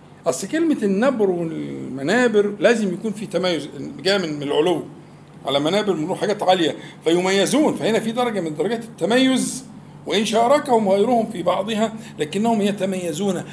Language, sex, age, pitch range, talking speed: Arabic, male, 50-69, 160-225 Hz, 135 wpm